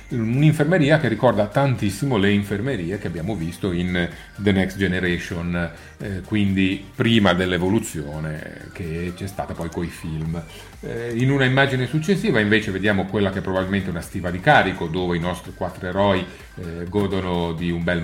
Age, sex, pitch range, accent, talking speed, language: 40-59, male, 95-140 Hz, native, 160 wpm, Italian